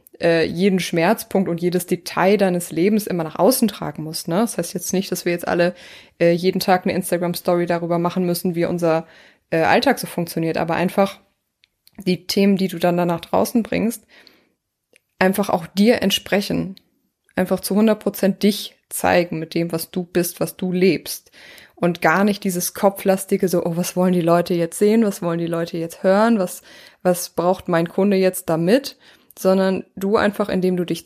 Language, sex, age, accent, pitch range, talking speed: German, female, 20-39, German, 175-205 Hz, 180 wpm